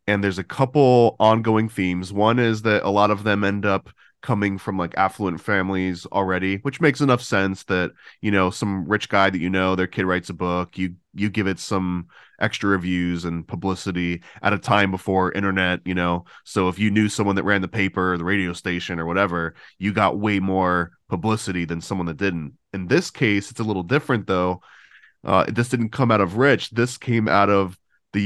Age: 20-39